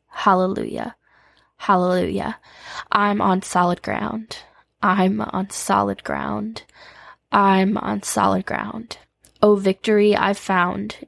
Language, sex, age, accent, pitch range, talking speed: English, female, 10-29, American, 190-215 Hz, 95 wpm